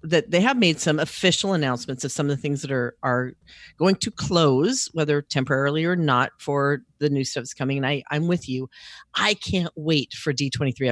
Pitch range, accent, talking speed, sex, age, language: 135-185 Hz, American, 210 wpm, female, 40-59, English